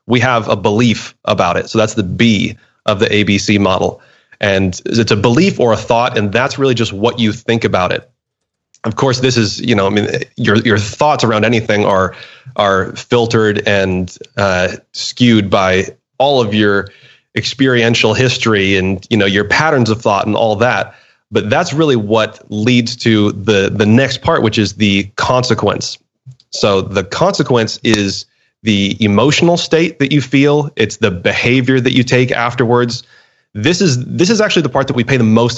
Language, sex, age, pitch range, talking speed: English, male, 30-49, 105-125 Hz, 180 wpm